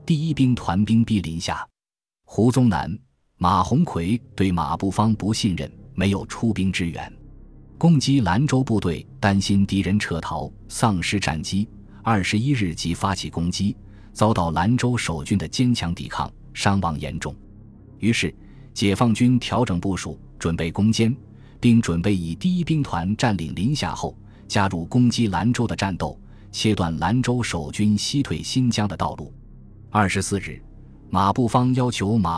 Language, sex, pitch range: Chinese, male, 95-120 Hz